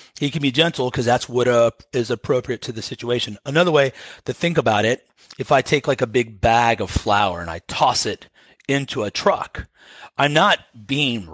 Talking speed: 200 wpm